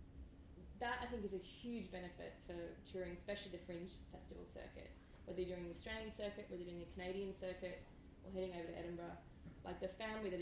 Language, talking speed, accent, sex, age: English, 200 wpm, Australian, female, 20-39